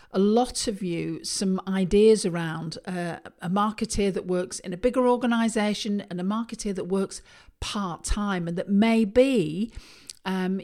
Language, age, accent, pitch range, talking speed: English, 50-69, British, 180-230 Hz, 160 wpm